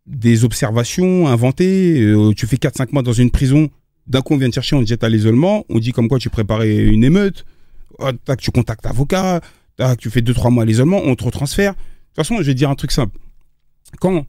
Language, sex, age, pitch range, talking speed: French, male, 30-49, 110-140 Hz, 225 wpm